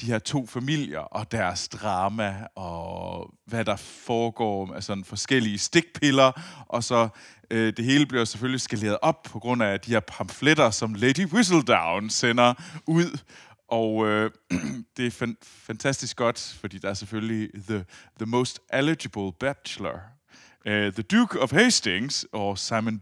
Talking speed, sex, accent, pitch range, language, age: 140 wpm, male, native, 100-125 Hz, Danish, 30-49